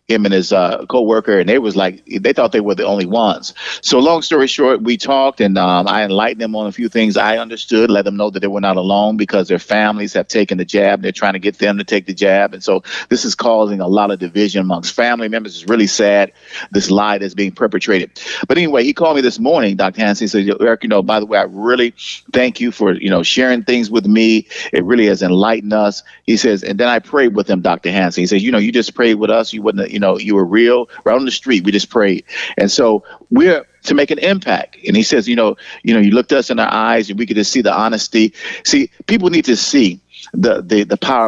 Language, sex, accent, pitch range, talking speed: English, male, American, 100-120 Hz, 260 wpm